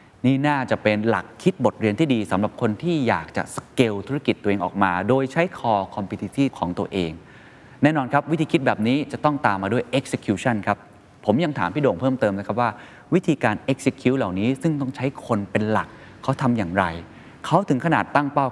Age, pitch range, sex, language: 20-39, 100-135 Hz, male, Thai